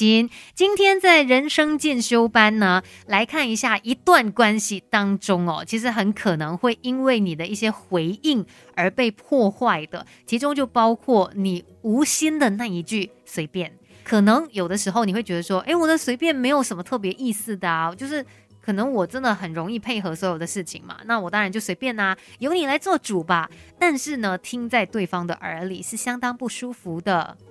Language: Chinese